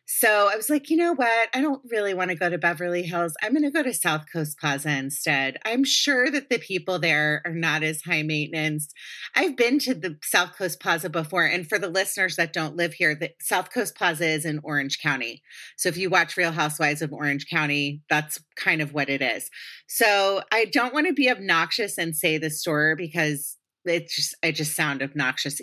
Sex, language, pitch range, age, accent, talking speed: female, English, 150-185 Hz, 30-49, American, 220 wpm